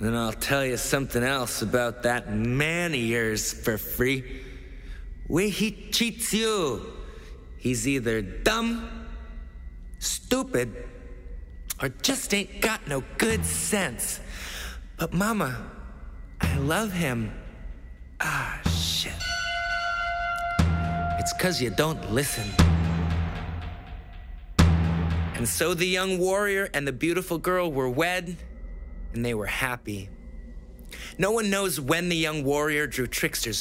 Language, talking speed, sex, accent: English, 115 wpm, male, American